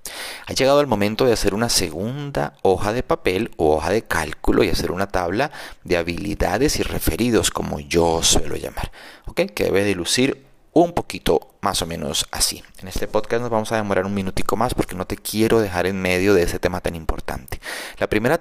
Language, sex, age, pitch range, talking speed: Spanish, male, 30-49, 90-115 Hz, 200 wpm